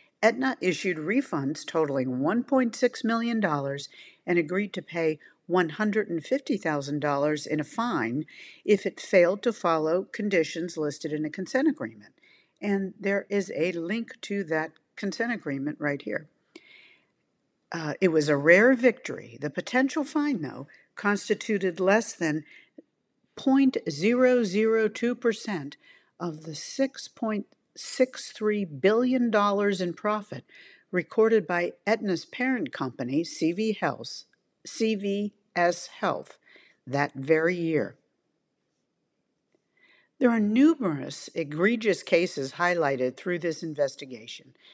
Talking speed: 105 wpm